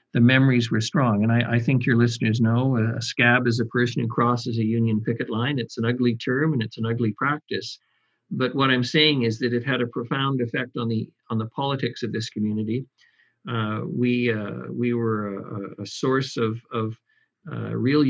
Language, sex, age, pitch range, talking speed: English, male, 50-69, 120-145 Hz, 205 wpm